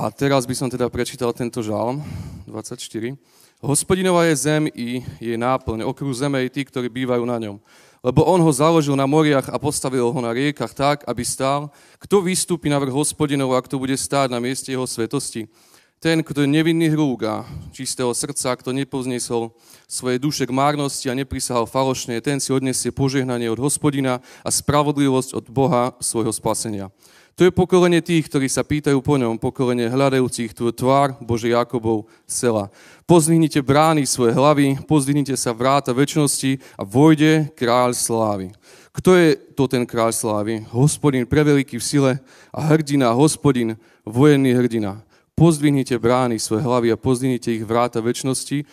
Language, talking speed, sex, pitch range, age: Slovak, 160 wpm, male, 120-145 Hz, 30-49